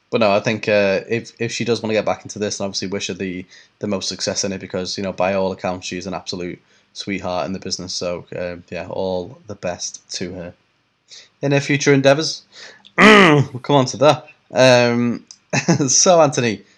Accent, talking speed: British, 205 wpm